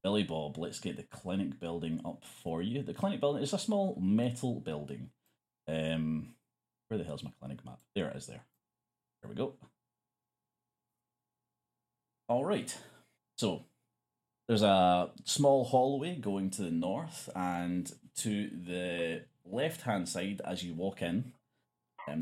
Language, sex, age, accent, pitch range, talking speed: English, male, 30-49, British, 80-105 Hz, 145 wpm